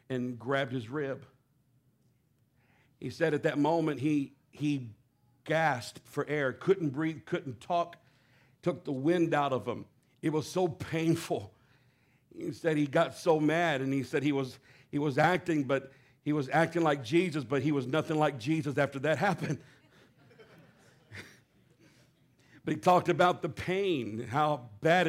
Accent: American